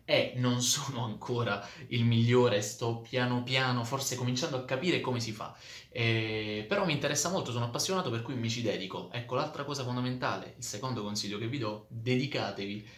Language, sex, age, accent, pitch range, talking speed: Italian, male, 20-39, native, 105-125 Hz, 185 wpm